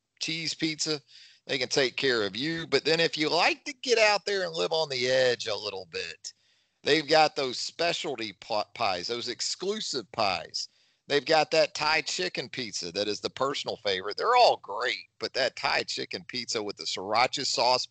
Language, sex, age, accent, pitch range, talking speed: English, male, 40-59, American, 120-160 Hz, 190 wpm